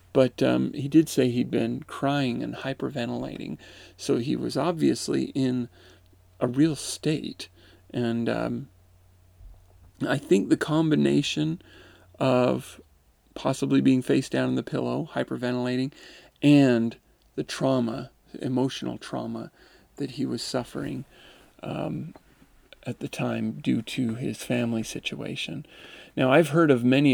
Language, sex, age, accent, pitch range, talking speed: English, male, 40-59, American, 110-135 Hz, 125 wpm